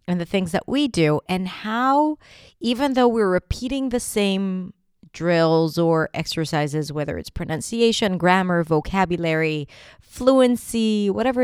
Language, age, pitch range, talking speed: English, 30-49, 155-210 Hz, 125 wpm